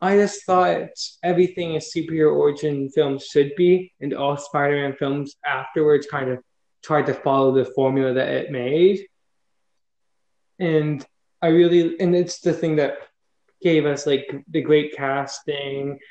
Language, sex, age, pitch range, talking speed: English, male, 20-39, 140-180 Hz, 145 wpm